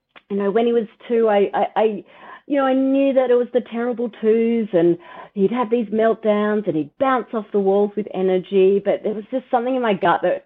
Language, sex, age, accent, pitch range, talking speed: English, female, 30-49, Australian, 175-230 Hz, 235 wpm